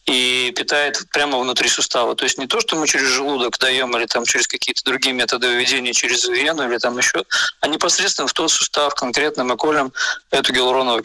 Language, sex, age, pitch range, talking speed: Russian, male, 20-39, 125-150 Hz, 190 wpm